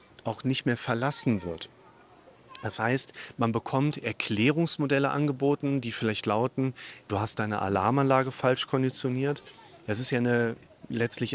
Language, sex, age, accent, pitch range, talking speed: German, male, 40-59, German, 110-140 Hz, 125 wpm